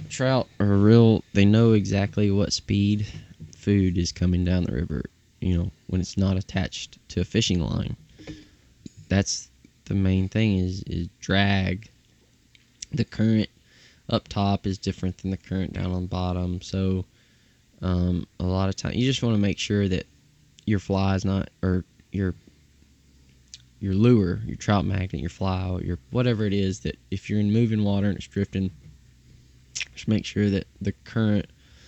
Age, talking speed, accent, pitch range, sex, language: 10-29, 165 wpm, American, 90-110 Hz, male, English